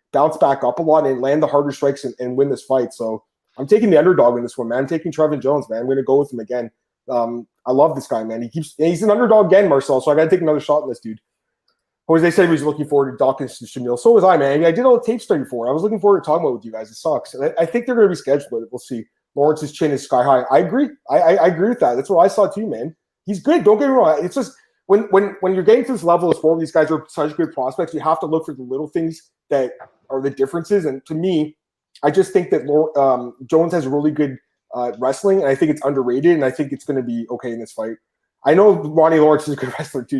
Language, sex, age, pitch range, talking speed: English, male, 30-49, 130-185 Hz, 300 wpm